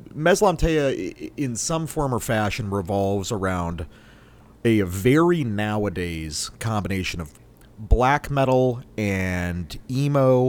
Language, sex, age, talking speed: English, male, 30-49, 95 wpm